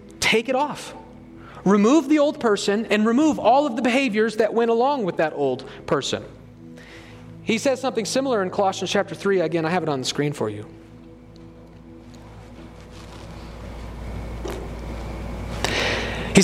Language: English